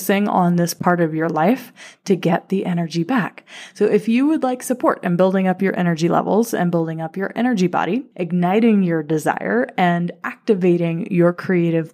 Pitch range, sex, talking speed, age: 170-215 Hz, female, 180 wpm, 20-39